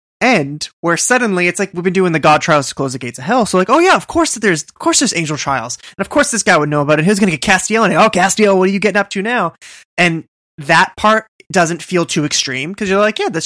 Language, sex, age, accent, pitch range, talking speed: English, male, 20-39, American, 140-190 Hz, 290 wpm